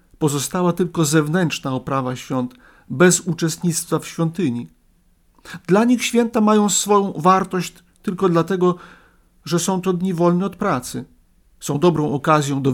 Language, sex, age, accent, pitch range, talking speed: Polish, male, 50-69, native, 145-185 Hz, 130 wpm